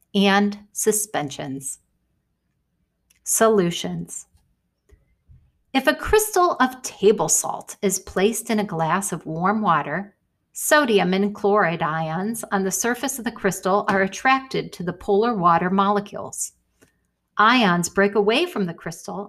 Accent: American